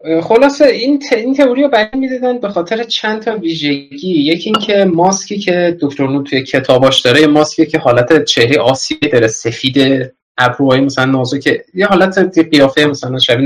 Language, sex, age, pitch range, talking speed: Persian, male, 20-39, 130-185 Hz, 170 wpm